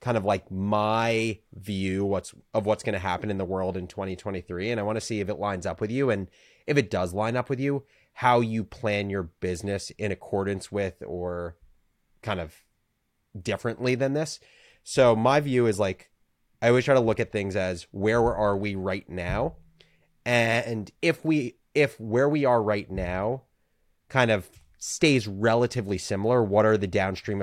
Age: 30-49